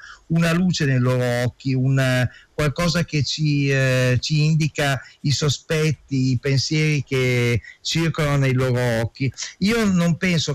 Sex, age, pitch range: male, 50-69, 130-170 Hz